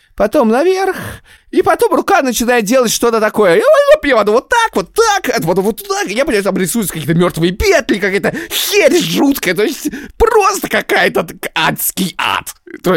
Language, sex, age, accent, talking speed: Russian, male, 30-49, native, 155 wpm